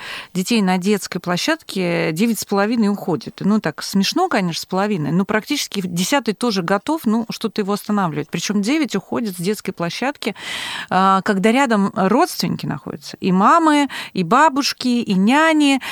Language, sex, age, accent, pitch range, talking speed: Russian, female, 30-49, native, 195-240 Hz, 145 wpm